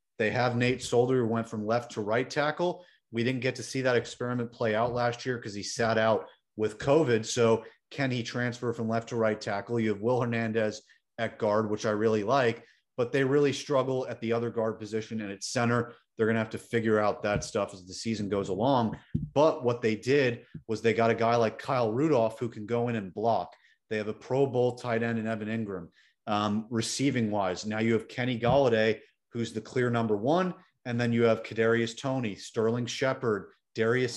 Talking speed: 215 wpm